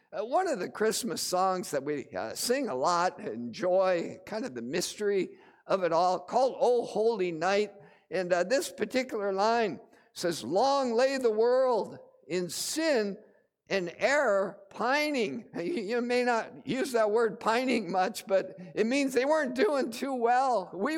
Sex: male